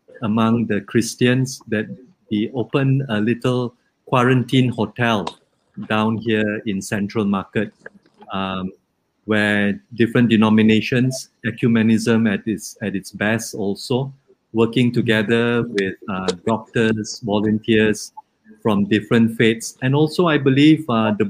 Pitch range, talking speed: 105-125 Hz, 115 wpm